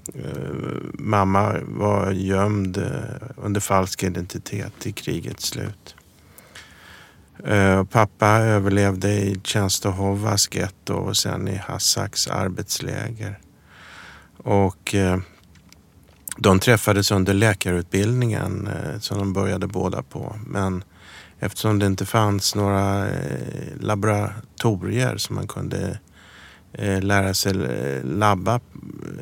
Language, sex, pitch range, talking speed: English, male, 95-110 Hz, 80 wpm